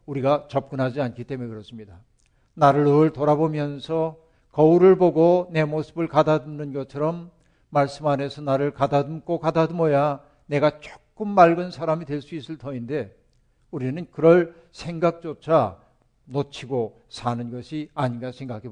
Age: 60-79